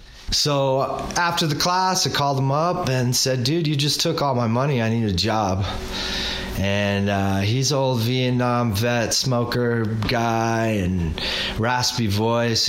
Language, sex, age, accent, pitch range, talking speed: English, male, 30-49, American, 110-130 Hz, 150 wpm